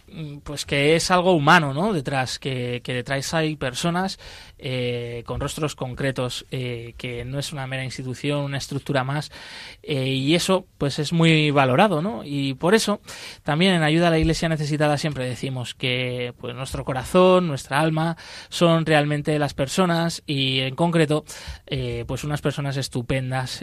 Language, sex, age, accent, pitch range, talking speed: Spanish, male, 20-39, Spanish, 130-160 Hz, 165 wpm